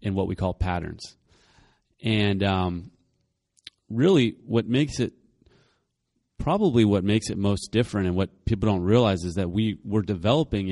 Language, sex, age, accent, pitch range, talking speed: English, male, 30-49, American, 95-115 Hz, 150 wpm